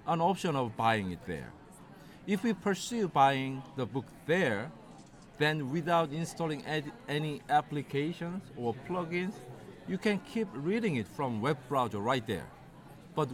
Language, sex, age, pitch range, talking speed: English, male, 50-69, 120-170 Hz, 140 wpm